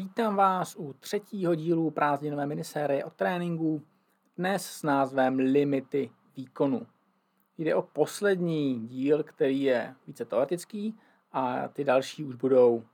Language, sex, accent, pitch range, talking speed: Czech, male, native, 135-175 Hz, 125 wpm